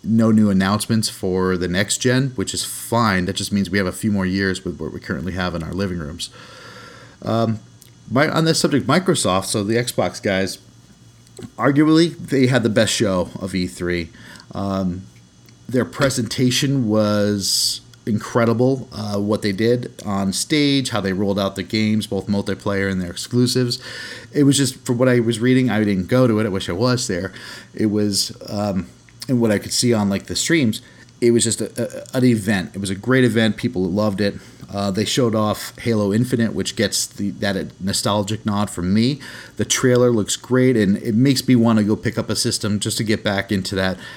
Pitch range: 95-120 Hz